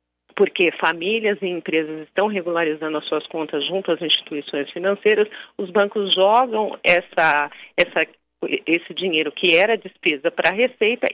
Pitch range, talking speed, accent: 175-220 Hz, 130 wpm, Brazilian